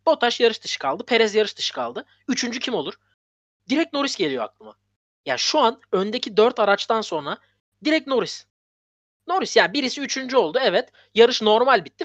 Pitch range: 160-260 Hz